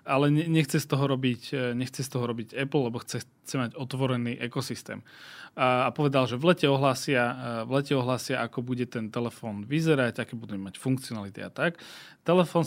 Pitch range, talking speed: 125-150 Hz, 175 wpm